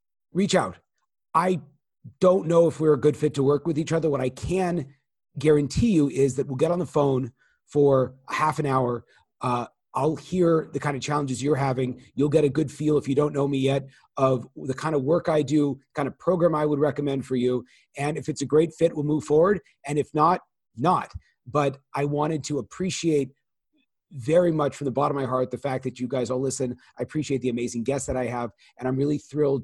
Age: 30-49